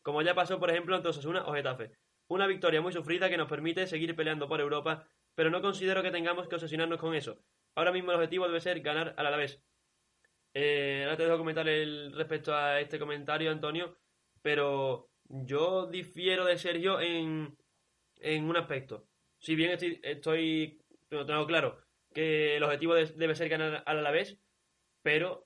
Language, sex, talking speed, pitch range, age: Spanish, male, 180 wpm, 150-175 Hz, 20-39